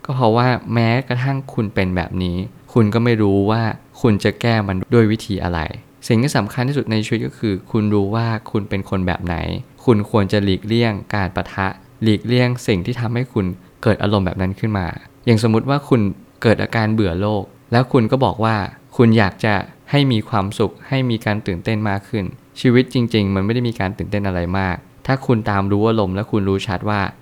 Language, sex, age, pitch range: Thai, male, 20-39, 100-120 Hz